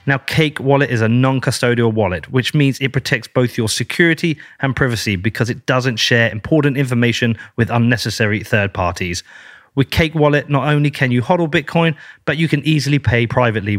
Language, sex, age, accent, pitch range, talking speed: English, male, 30-49, British, 115-150 Hz, 180 wpm